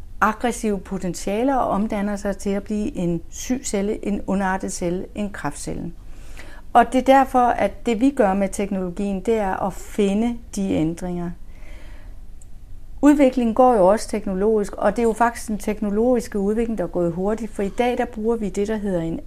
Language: Danish